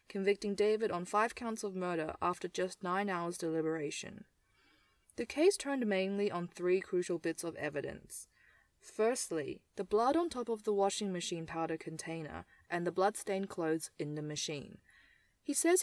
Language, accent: English, Australian